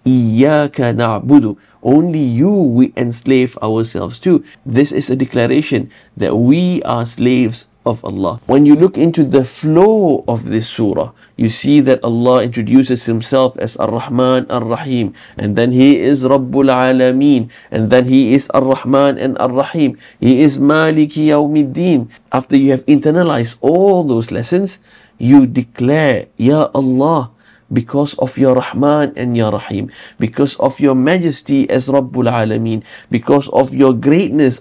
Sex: male